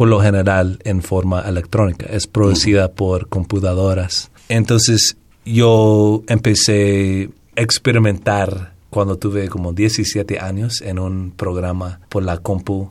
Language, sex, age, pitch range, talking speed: Spanish, male, 40-59, 90-115 Hz, 120 wpm